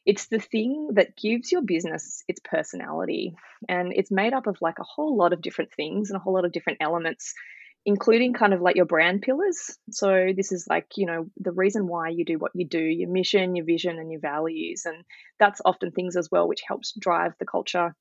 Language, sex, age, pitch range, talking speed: English, female, 20-39, 175-210 Hz, 225 wpm